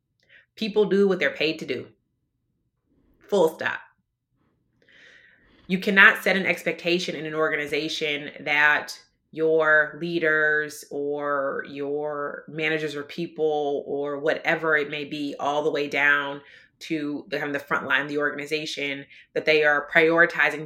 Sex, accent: female, American